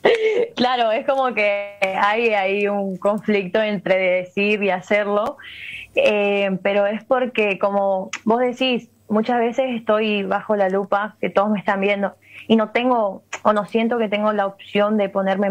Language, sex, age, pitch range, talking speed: Spanish, female, 20-39, 195-225 Hz, 165 wpm